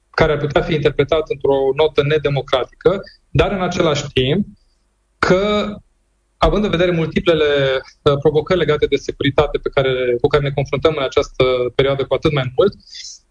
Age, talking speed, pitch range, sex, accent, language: 20-39, 145 wpm, 135-180 Hz, male, native, Romanian